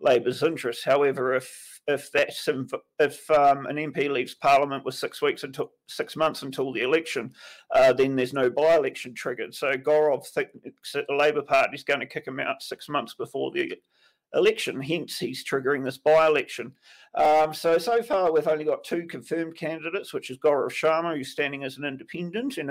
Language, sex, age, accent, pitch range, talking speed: English, male, 40-59, Australian, 145-220 Hz, 185 wpm